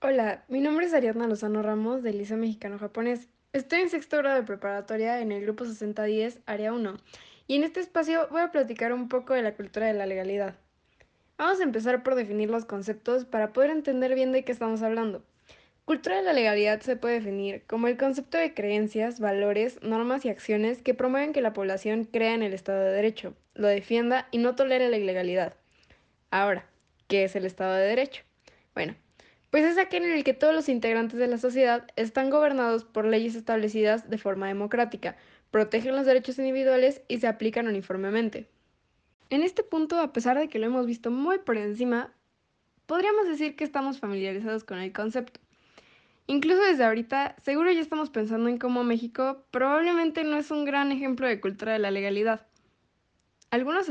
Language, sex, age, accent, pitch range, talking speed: Spanish, female, 10-29, Mexican, 215-270 Hz, 185 wpm